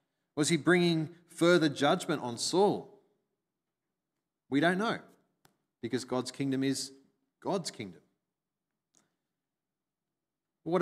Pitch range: 125-165 Hz